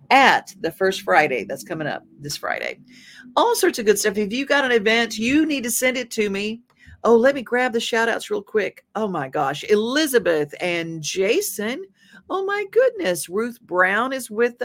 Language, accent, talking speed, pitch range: English, American, 195 wpm, 155-235 Hz